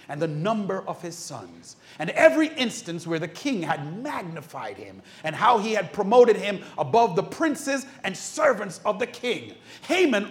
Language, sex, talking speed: English, male, 175 wpm